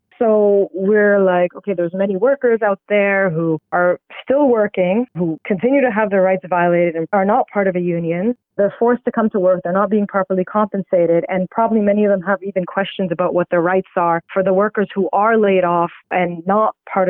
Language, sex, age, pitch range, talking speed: English, female, 20-39, 180-210 Hz, 215 wpm